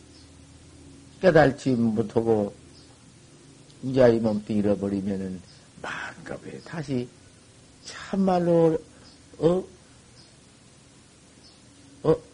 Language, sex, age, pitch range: Korean, male, 60-79, 120-165 Hz